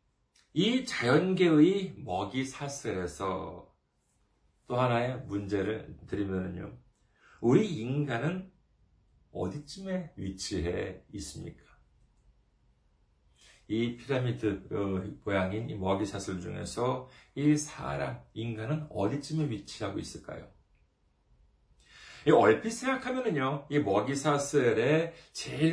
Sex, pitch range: male, 110-185 Hz